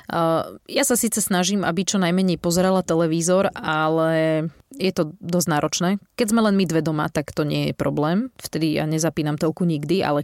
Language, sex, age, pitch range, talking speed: Slovak, female, 30-49, 160-195 Hz, 180 wpm